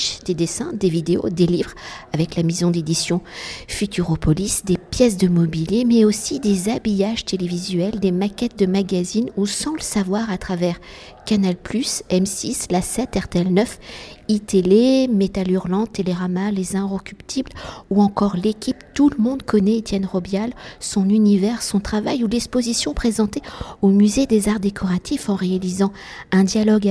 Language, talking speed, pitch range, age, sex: French, 145 wpm, 185-220 Hz, 50-69, female